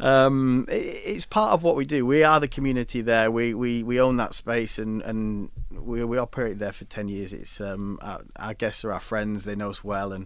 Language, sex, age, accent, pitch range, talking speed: English, male, 30-49, British, 105-125 Hz, 235 wpm